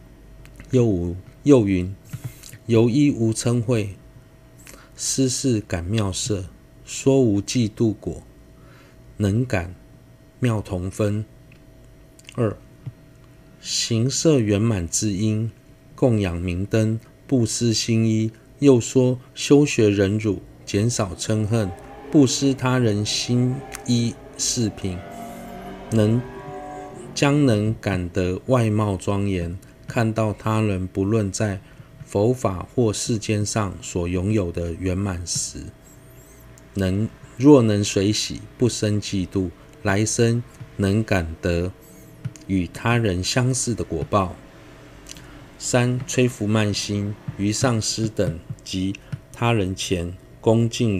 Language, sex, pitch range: Chinese, male, 100-125 Hz